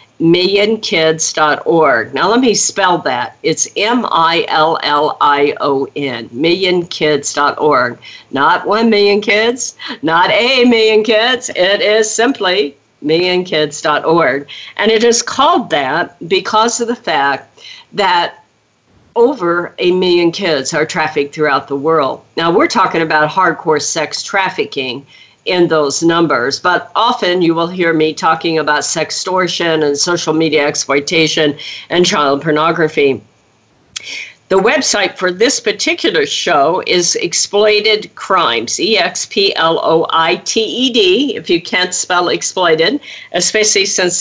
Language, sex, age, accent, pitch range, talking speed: English, female, 50-69, American, 155-210 Hz, 115 wpm